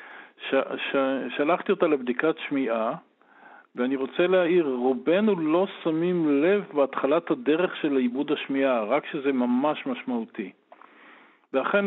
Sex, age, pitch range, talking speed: male, 50-69, 130-175 Hz, 115 wpm